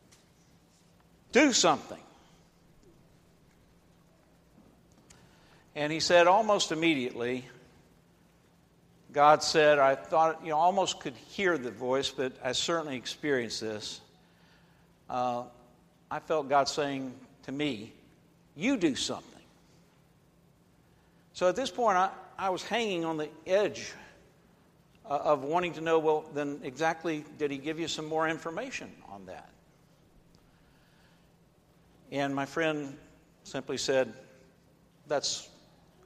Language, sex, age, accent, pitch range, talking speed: English, male, 60-79, American, 140-175 Hz, 110 wpm